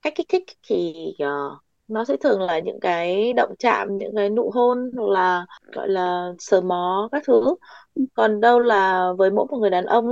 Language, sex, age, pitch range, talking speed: Vietnamese, female, 20-39, 175-250 Hz, 200 wpm